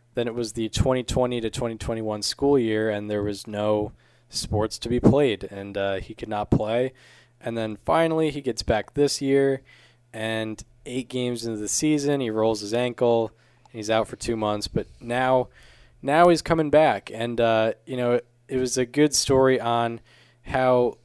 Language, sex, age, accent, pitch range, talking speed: English, male, 20-39, American, 110-130 Hz, 185 wpm